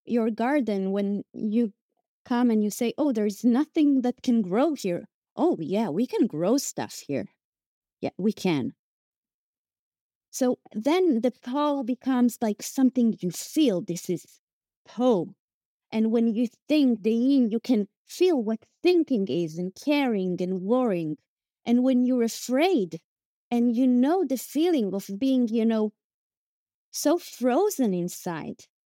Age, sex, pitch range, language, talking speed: 30-49, female, 205-285 Hz, English, 145 wpm